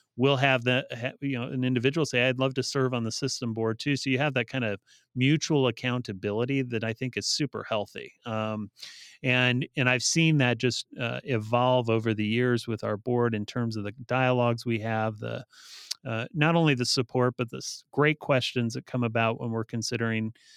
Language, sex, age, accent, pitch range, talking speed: English, male, 30-49, American, 110-130 Hz, 200 wpm